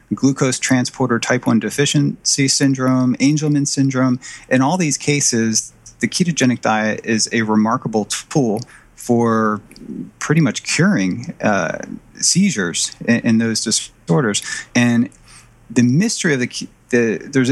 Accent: American